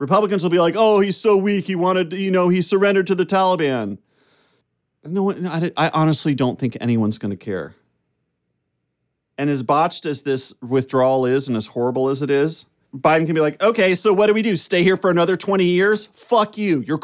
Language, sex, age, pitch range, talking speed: English, male, 40-59, 125-170 Hz, 215 wpm